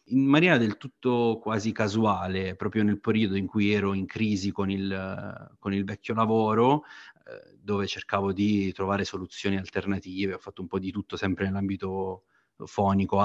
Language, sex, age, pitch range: Italian, male, 30-49, 95-110 Hz